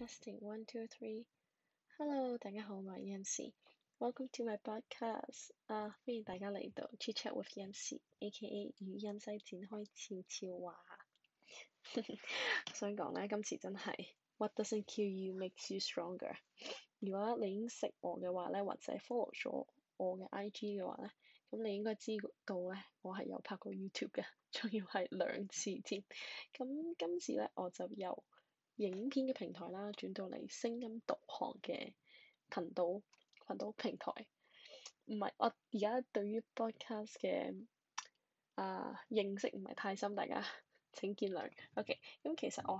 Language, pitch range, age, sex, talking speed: English, 195-235 Hz, 10-29, female, 40 wpm